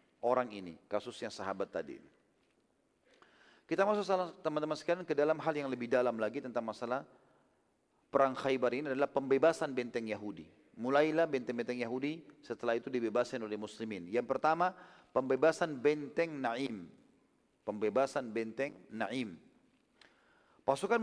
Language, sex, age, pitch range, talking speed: Indonesian, male, 40-59, 130-160 Hz, 125 wpm